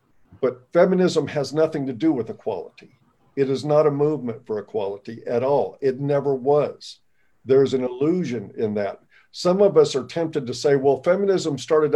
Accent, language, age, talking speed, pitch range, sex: American, English, 50-69, 175 wpm, 125-150 Hz, male